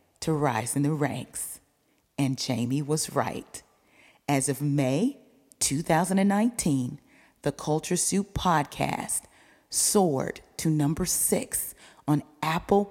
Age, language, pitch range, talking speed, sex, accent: 40-59, English, 145-180 Hz, 105 wpm, female, American